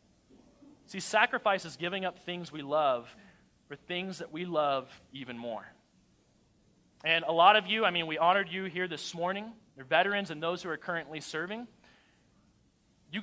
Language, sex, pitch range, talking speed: English, male, 175-235 Hz, 170 wpm